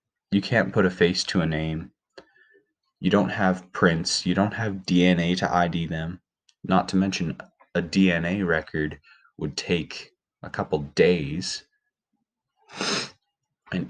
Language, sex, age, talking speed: English, male, 20-39, 135 wpm